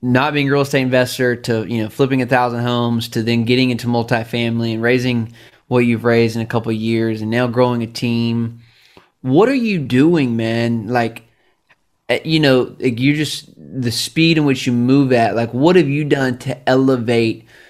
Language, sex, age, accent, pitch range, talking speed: English, male, 20-39, American, 115-135 Hz, 190 wpm